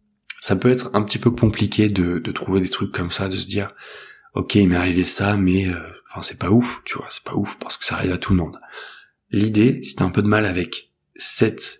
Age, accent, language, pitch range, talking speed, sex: 20-39, French, French, 95-110 Hz, 255 wpm, male